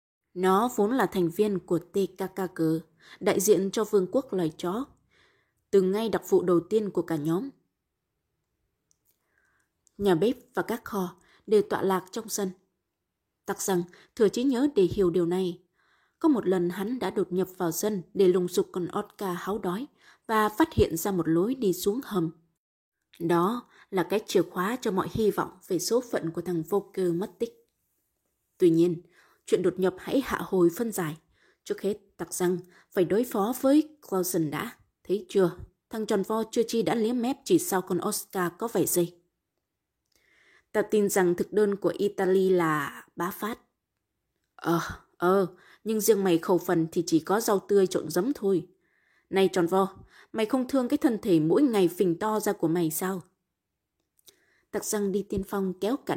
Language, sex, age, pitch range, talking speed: Vietnamese, female, 20-39, 175-215 Hz, 185 wpm